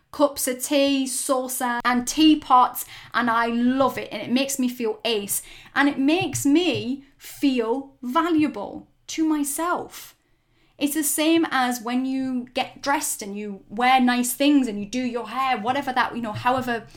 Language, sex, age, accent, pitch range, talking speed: English, female, 10-29, British, 210-265 Hz, 165 wpm